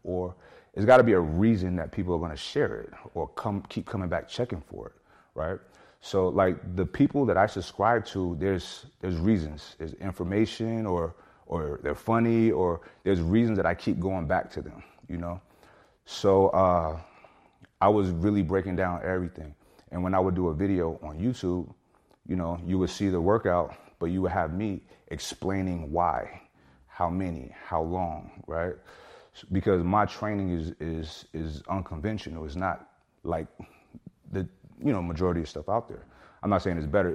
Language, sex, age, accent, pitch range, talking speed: English, male, 30-49, American, 85-100 Hz, 180 wpm